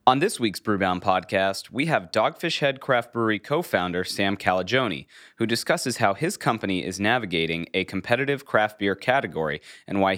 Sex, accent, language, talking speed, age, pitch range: male, American, English, 170 wpm, 30-49, 95-125 Hz